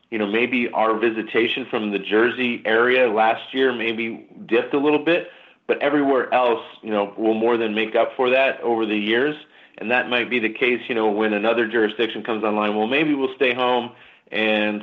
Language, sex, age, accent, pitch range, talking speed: English, male, 40-59, American, 105-125 Hz, 200 wpm